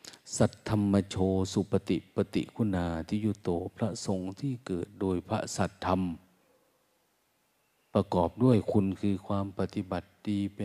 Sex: male